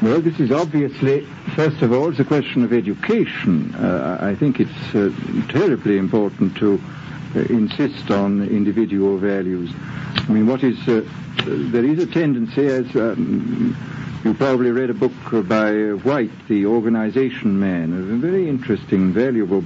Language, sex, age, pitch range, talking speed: English, male, 60-79, 105-145 Hz, 155 wpm